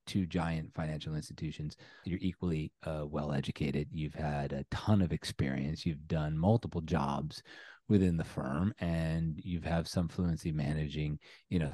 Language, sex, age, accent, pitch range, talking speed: English, male, 30-49, American, 75-95 Hz, 155 wpm